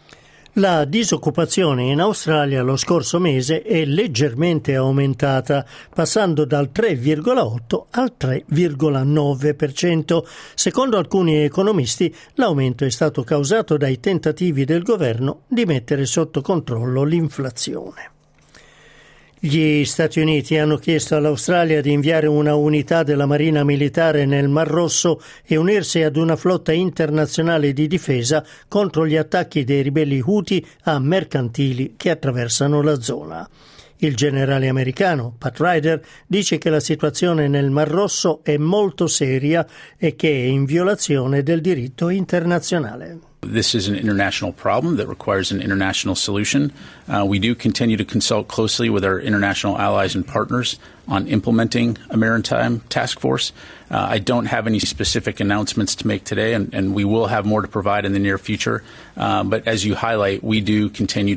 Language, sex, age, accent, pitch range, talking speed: Italian, male, 50-69, native, 110-160 Hz, 145 wpm